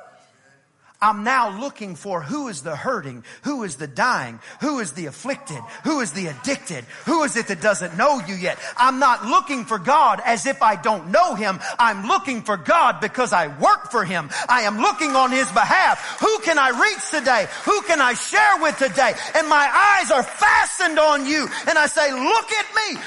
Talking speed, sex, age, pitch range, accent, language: 205 wpm, male, 40-59, 285-390 Hz, American, English